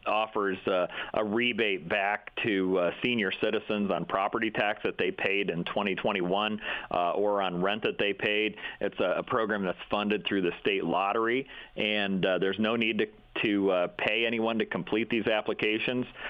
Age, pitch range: 40-59, 100-115 Hz